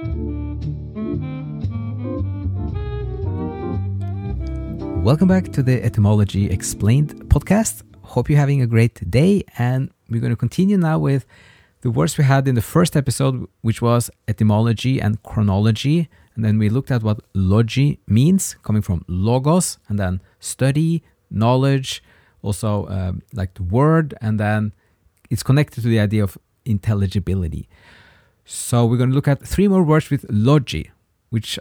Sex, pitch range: male, 100-135 Hz